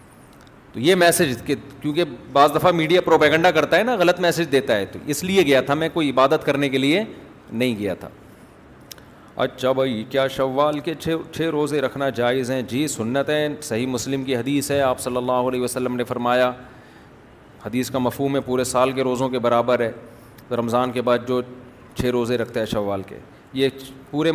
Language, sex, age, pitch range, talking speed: Urdu, male, 40-59, 125-155 Hz, 190 wpm